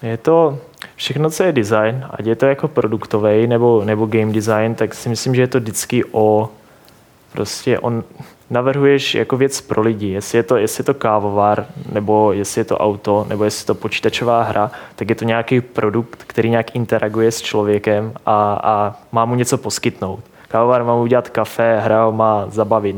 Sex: male